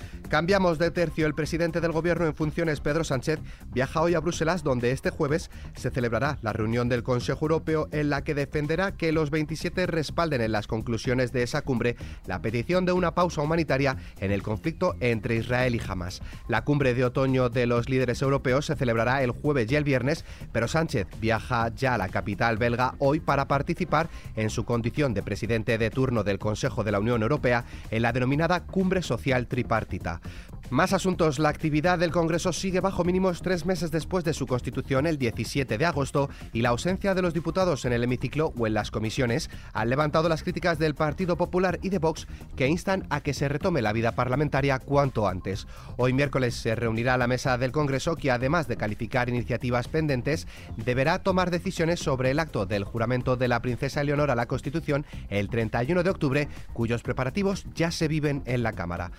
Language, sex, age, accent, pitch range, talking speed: Spanish, male, 30-49, Spanish, 115-160 Hz, 195 wpm